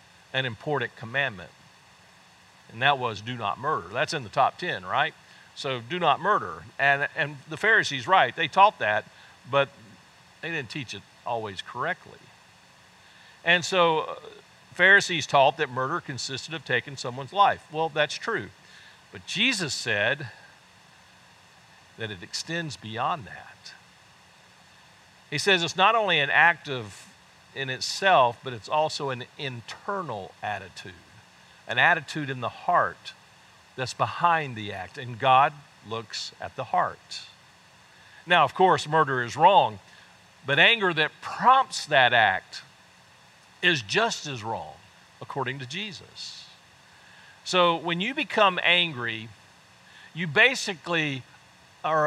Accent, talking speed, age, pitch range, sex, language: American, 130 wpm, 50-69, 115-170 Hz, male, English